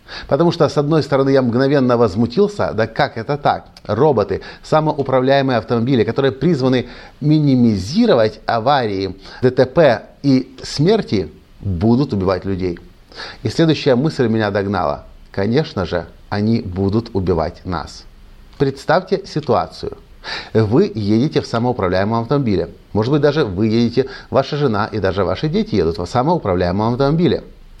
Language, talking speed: Russian, 125 wpm